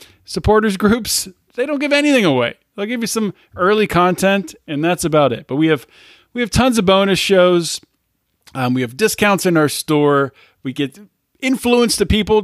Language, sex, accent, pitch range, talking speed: English, male, American, 145-190 Hz, 185 wpm